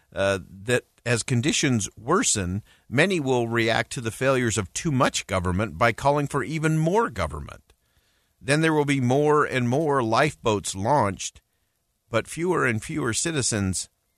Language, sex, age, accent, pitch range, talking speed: English, male, 50-69, American, 95-135 Hz, 150 wpm